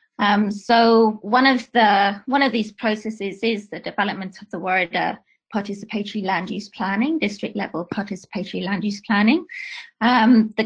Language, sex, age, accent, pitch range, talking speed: English, female, 20-39, British, 195-230 Hz, 150 wpm